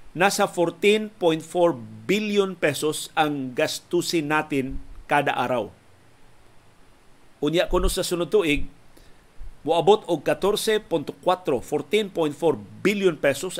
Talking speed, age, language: 90 wpm, 50-69, Filipino